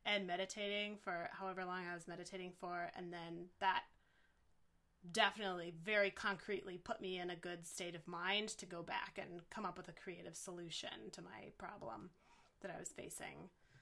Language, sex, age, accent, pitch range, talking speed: English, female, 20-39, American, 175-205 Hz, 175 wpm